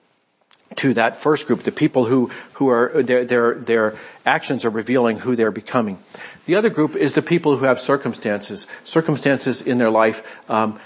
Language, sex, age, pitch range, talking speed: English, male, 50-69, 115-140 Hz, 175 wpm